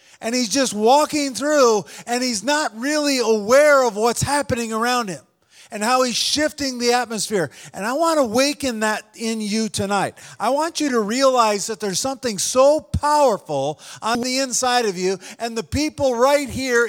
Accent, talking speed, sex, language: American, 180 wpm, male, English